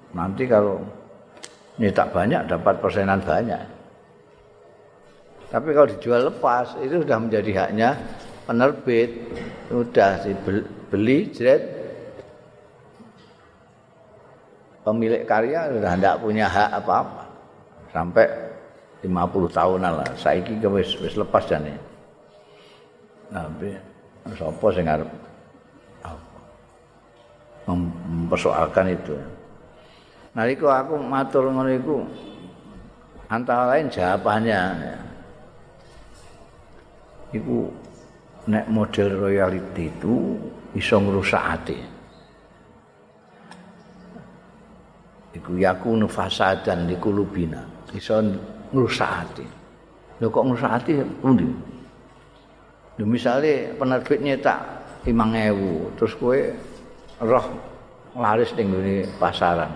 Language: Indonesian